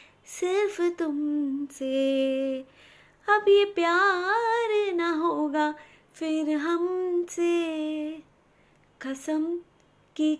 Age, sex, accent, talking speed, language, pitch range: 20-39, female, native, 65 wpm, Hindi, 260-330 Hz